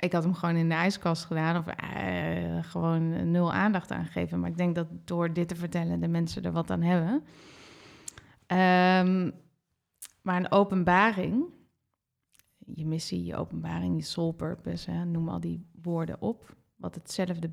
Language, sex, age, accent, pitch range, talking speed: Dutch, female, 30-49, Dutch, 165-195 Hz, 165 wpm